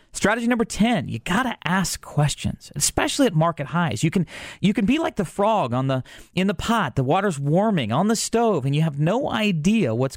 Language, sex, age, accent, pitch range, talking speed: English, male, 40-59, American, 125-195 Hz, 220 wpm